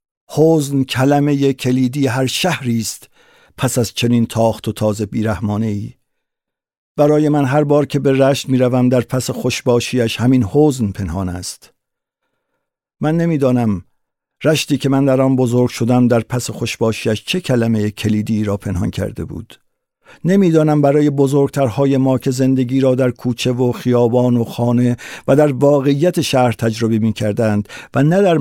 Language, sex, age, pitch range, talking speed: Persian, male, 50-69, 115-140 Hz, 150 wpm